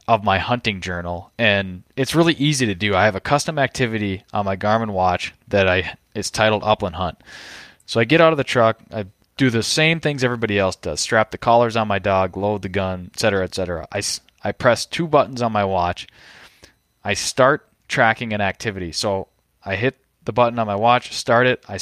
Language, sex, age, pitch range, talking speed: English, male, 20-39, 100-125 Hz, 210 wpm